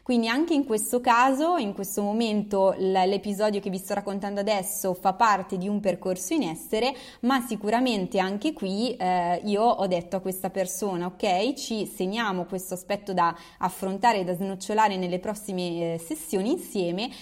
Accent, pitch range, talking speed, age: native, 185-230 Hz, 160 wpm, 20-39